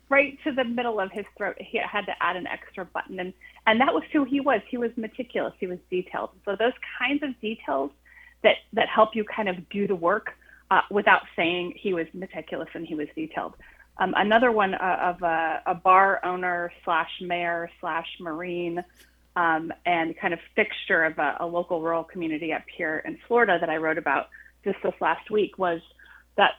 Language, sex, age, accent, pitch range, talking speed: English, female, 30-49, American, 170-215 Hz, 200 wpm